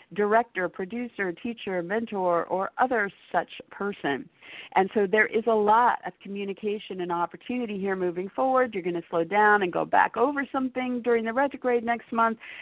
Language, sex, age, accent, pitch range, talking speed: English, female, 50-69, American, 170-225 Hz, 170 wpm